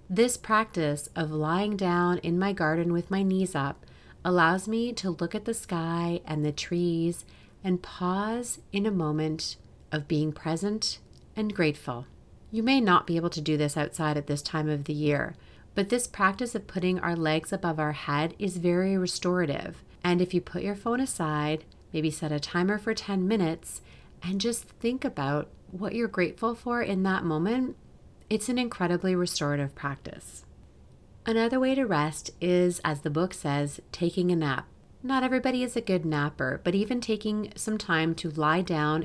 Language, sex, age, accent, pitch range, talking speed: English, female, 30-49, American, 155-210 Hz, 180 wpm